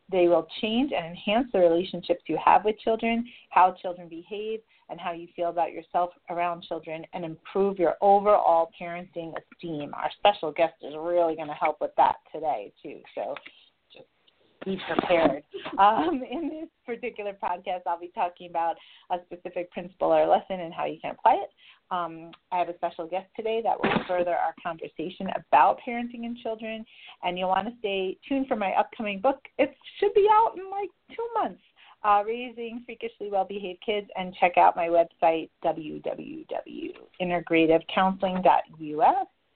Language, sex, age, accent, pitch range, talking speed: English, female, 30-49, American, 170-230 Hz, 165 wpm